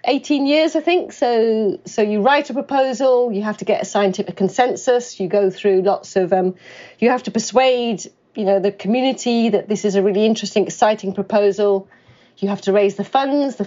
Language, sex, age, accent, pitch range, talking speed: English, female, 40-59, British, 195-240 Hz, 200 wpm